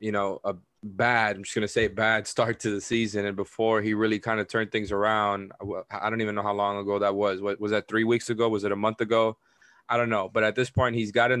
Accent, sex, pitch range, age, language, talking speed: American, male, 105-120 Hz, 20-39, English, 270 wpm